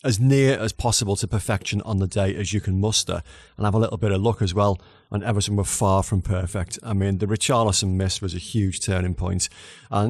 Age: 40-59